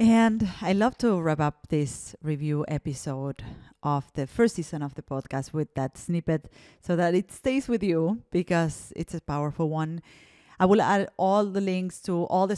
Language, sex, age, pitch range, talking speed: English, female, 30-49, 155-195 Hz, 185 wpm